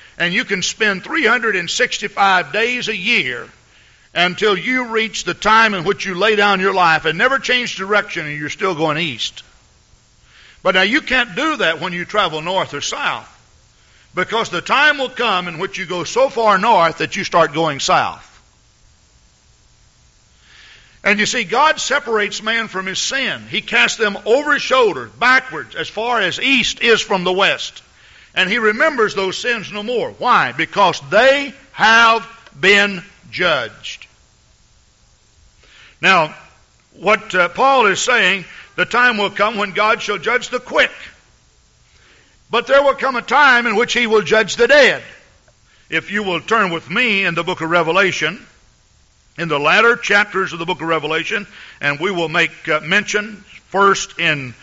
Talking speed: 165 wpm